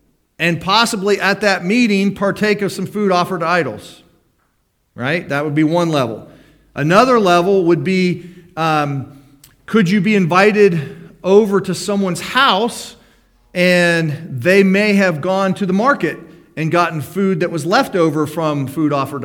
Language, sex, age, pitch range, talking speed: English, male, 40-59, 150-200 Hz, 155 wpm